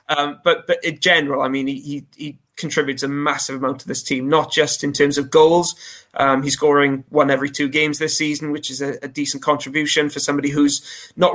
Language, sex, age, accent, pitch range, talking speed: English, male, 20-39, British, 140-155 Hz, 215 wpm